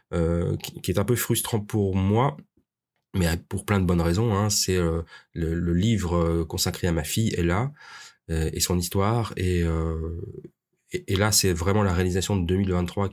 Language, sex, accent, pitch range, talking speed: French, male, French, 85-110 Hz, 185 wpm